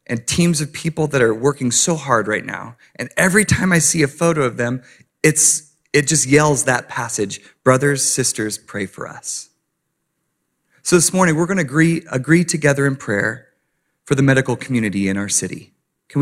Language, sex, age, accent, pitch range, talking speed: English, male, 30-49, American, 135-165 Hz, 180 wpm